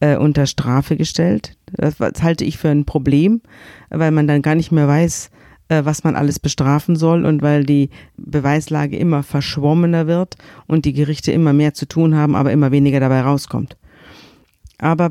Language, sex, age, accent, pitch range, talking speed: German, female, 50-69, German, 130-150 Hz, 165 wpm